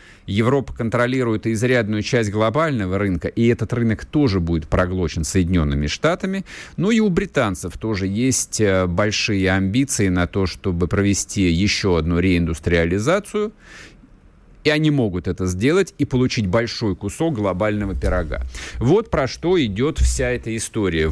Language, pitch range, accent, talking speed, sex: Russian, 95-130 Hz, native, 135 wpm, male